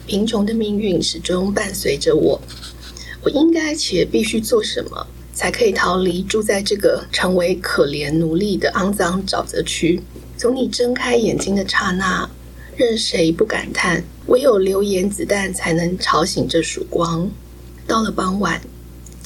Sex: female